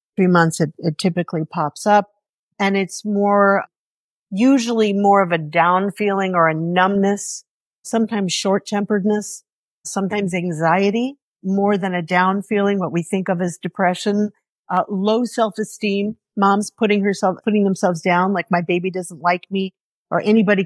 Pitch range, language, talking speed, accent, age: 180-210 Hz, English, 155 wpm, American, 50-69